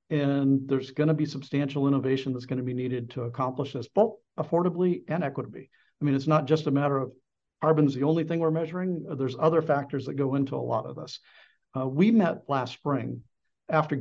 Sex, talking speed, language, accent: male, 210 wpm, English, American